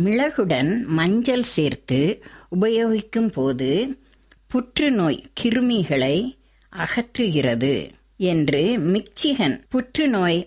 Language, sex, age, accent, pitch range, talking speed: Tamil, female, 60-79, native, 140-215 Hz, 65 wpm